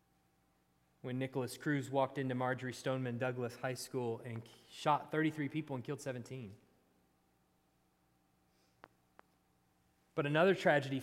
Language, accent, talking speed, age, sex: English, American, 110 wpm, 30-49, male